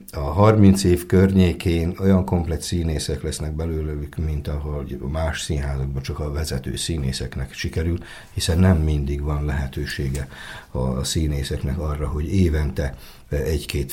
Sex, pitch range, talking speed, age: male, 70-90 Hz, 125 wpm, 60-79